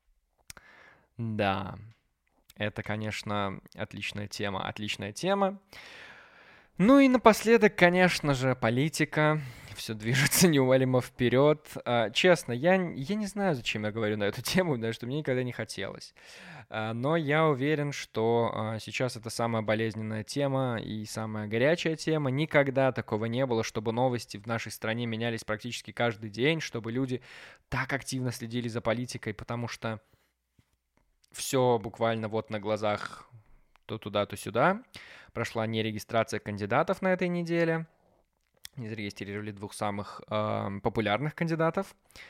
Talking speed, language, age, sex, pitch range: 130 wpm, Russian, 20-39, male, 110-135 Hz